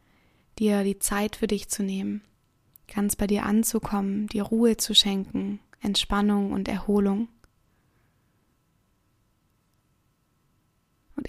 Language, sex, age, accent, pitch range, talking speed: German, female, 20-39, German, 205-230 Hz, 100 wpm